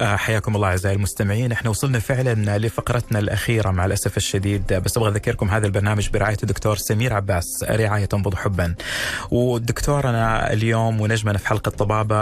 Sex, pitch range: male, 105-135 Hz